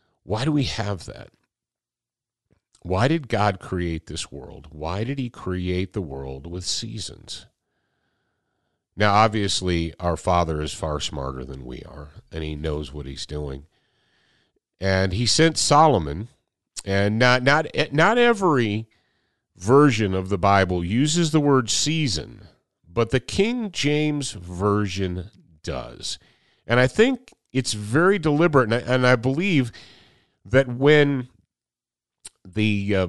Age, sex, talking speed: 50-69, male, 130 wpm